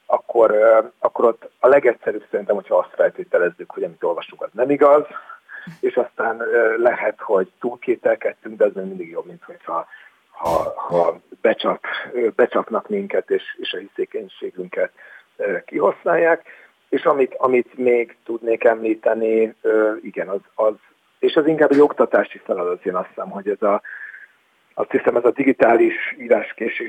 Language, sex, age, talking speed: Hungarian, male, 50-69, 145 wpm